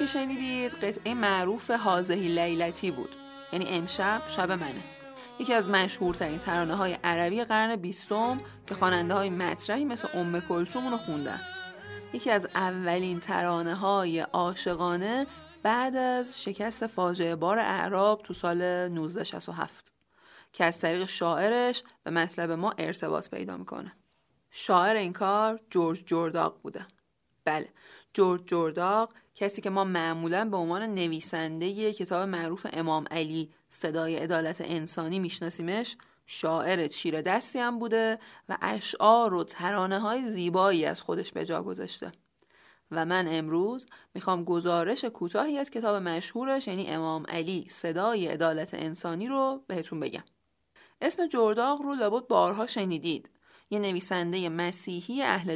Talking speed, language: 130 wpm, English